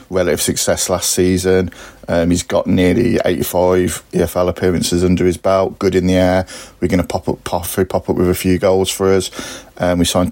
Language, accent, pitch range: English, British, 90-100 Hz